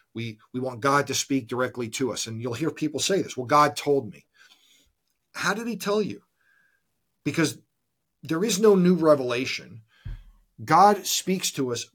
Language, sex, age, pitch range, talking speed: English, male, 40-59, 115-150 Hz, 170 wpm